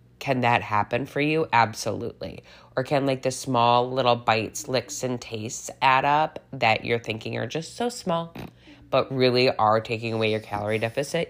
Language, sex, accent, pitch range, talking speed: English, female, American, 105-150 Hz, 175 wpm